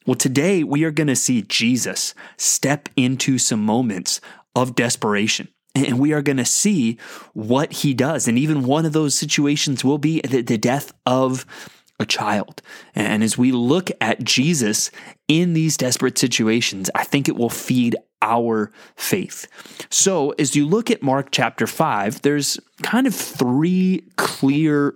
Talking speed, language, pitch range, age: 160 wpm, English, 115-145 Hz, 20-39